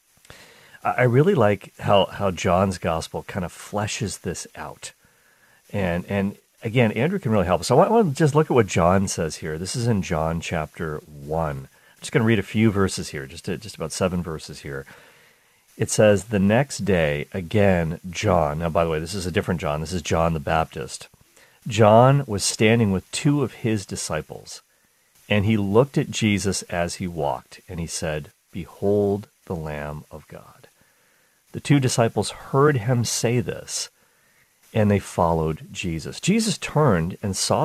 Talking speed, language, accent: 180 wpm, English, American